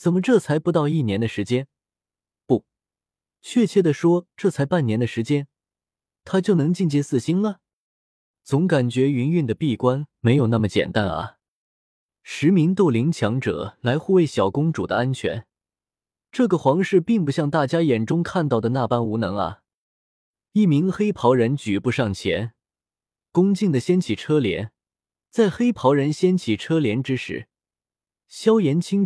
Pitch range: 115-175 Hz